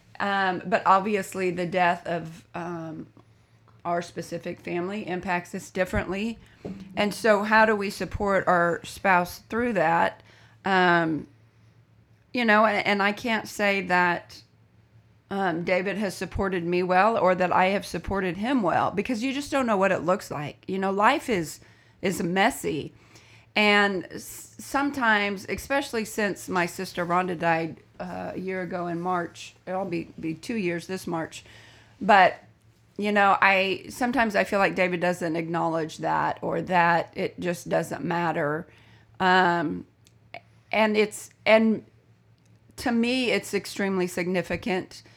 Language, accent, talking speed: English, American, 140 wpm